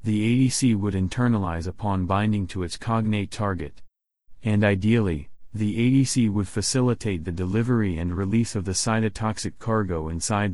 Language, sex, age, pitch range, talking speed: English, male, 30-49, 95-115 Hz, 140 wpm